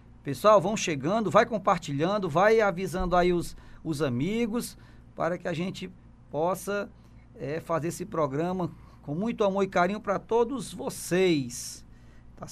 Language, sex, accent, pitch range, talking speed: Portuguese, male, Brazilian, 150-200 Hz, 135 wpm